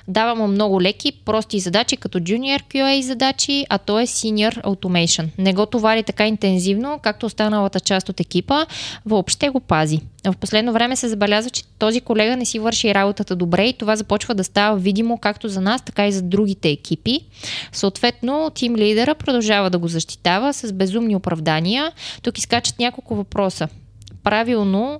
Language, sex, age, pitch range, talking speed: Bulgarian, female, 20-39, 185-230 Hz, 170 wpm